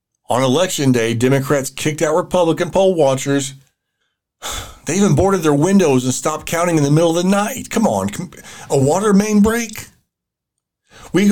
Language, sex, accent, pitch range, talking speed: English, male, American, 120-170 Hz, 160 wpm